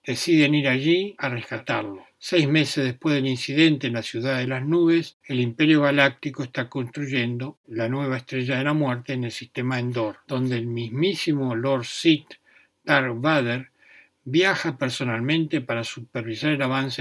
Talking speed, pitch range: 155 wpm, 125-145 Hz